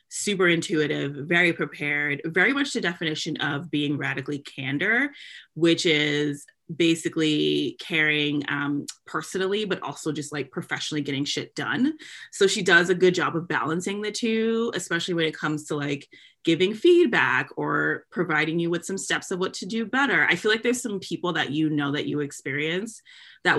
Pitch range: 145-185 Hz